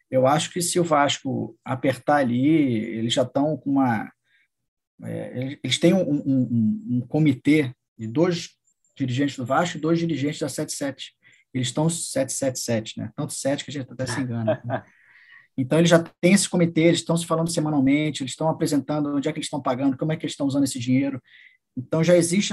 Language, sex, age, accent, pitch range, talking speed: Portuguese, male, 20-39, Brazilian, 125-165 Hz, 200 wpm